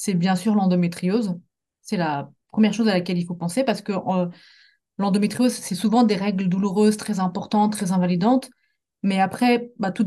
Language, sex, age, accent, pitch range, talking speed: French, female, 30-49, French, 185-225 Hz, 180 wpm